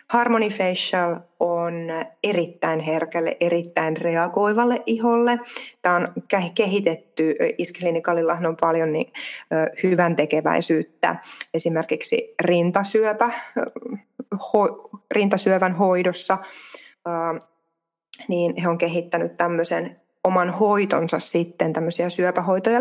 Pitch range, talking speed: 170-205 Hz, 80 wpm